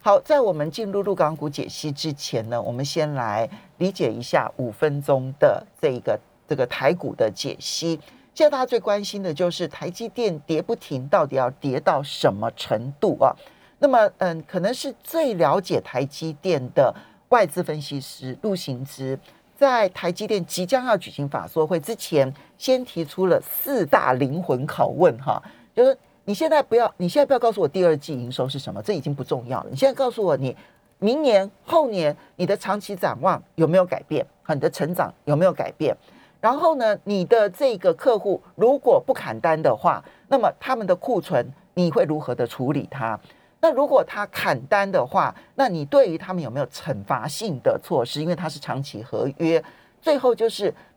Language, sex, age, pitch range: Chinese, male, 40-59, 150-230 Hz